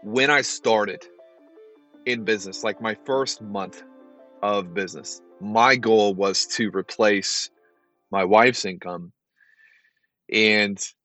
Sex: male